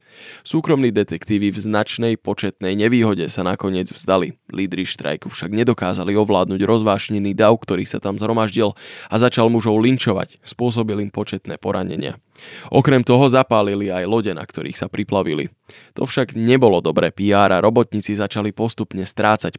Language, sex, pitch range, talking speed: Slovak, male, 100-115 Hz, 145 wpm